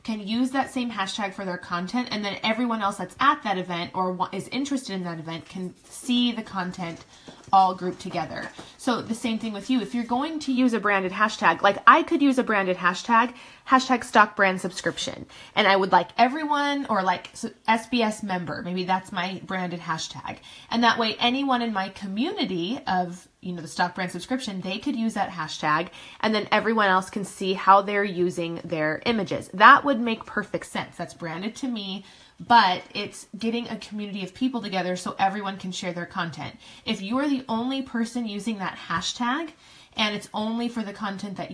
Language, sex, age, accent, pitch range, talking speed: English, female, 20-39, American, 185-235 Hz, 200 wpm